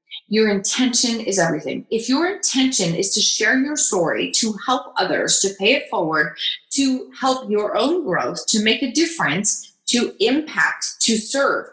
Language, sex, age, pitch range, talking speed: English, female, 30-49, 200-275 Hz, 165 wpm